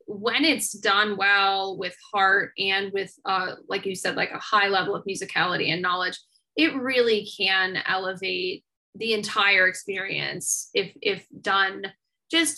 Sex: female